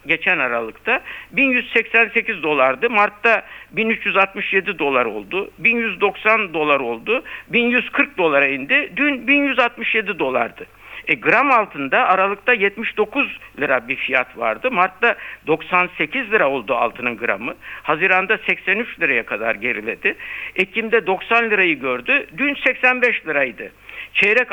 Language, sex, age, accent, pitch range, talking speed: Turkish, male, 60-79, native, 165-235 Hz, 110 wpm